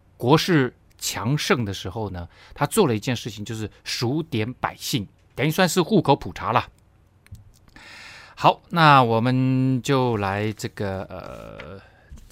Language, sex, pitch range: Chinese, male, 100-145 Hz